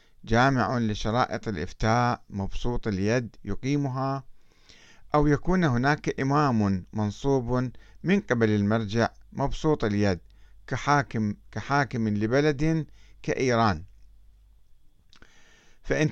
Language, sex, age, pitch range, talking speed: Arabic, male, 50-69, 105-145 Hz, 80 wpm